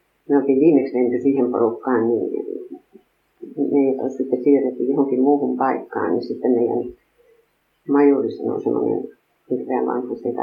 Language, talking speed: Finnish, 125 wpm